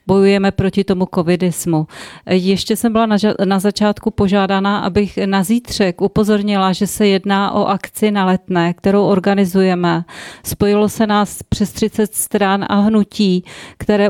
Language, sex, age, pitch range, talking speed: Czech, female, 30-49, 190-210 Hz, 135 wpm